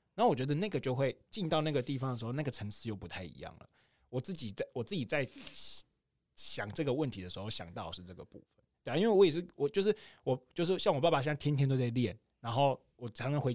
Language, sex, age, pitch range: Chinese, male, 20-39, 110-150 Hz